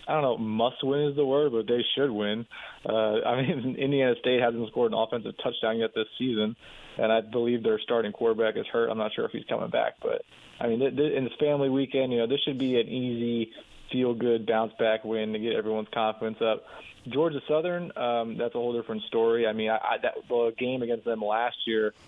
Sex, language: male, English